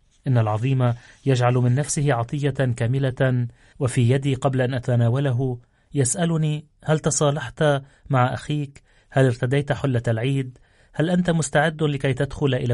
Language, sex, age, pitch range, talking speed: Arabic, male, 30-49, 115-140 Hz, 125 wpm